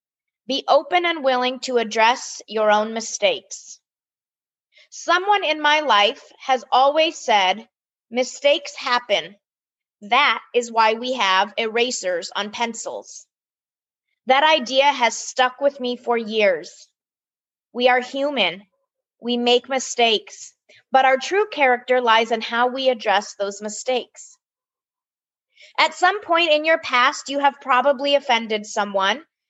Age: 30-49